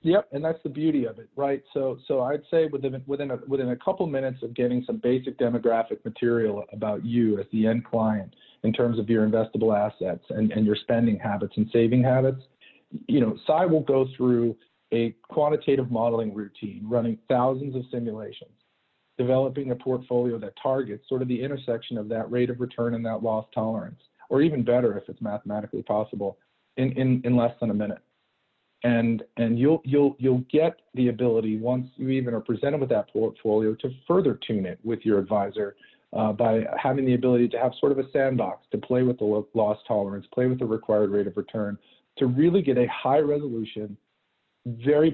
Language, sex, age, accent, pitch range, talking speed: English, male, 40-59, American, 110-130 Hz, 195 wpm